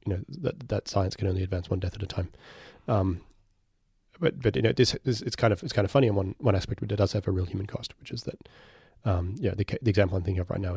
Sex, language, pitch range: male, English, 95-120 Hz